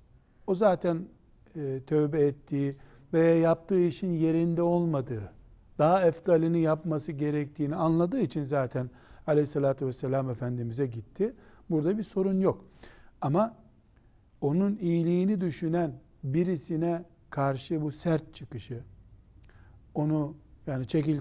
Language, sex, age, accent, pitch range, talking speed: Turkish, male, 60-79, native, 125-170 Hz, 105 wpm